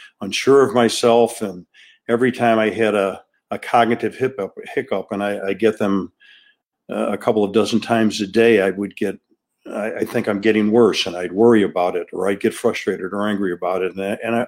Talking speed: 205 wpm